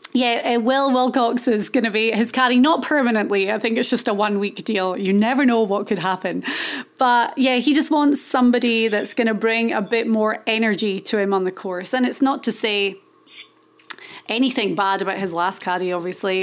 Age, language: 20-39, English